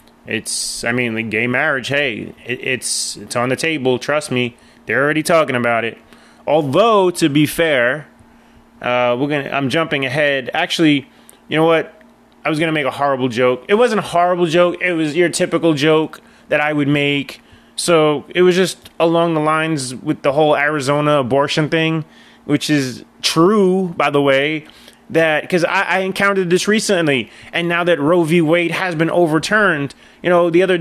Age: 20-39